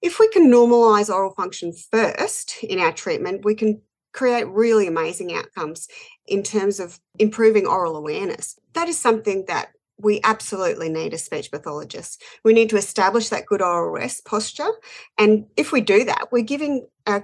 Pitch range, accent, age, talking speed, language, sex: 175-235 Hz, Australian, 40-59, 170 wpm, English, female